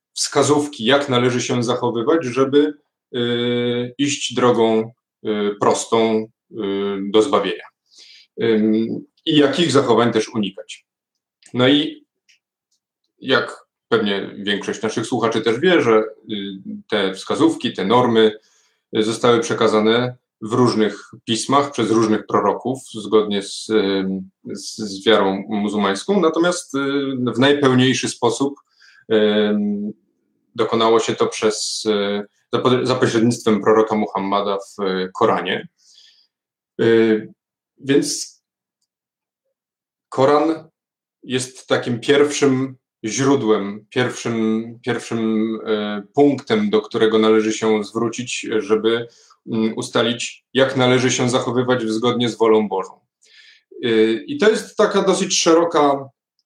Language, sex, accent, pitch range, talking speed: Polish, male, native, 110-135 Hz, 90 wpm